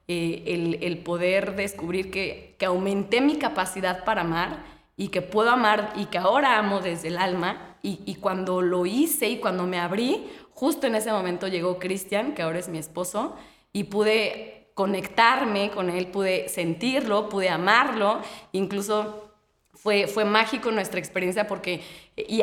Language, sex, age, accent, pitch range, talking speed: Spanish, female, 20-39, Mexican, 175-215 Hz, 160 wpm